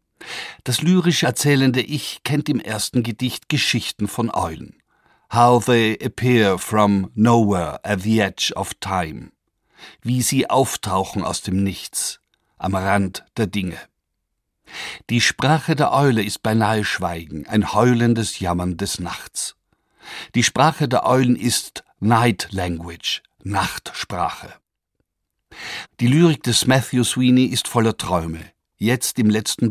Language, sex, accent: German, male, German